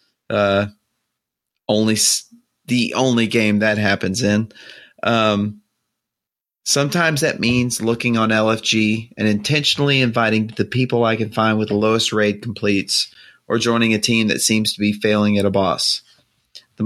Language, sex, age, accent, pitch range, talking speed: English, male, 30-49, American, 105-120 Hz, 145 wpm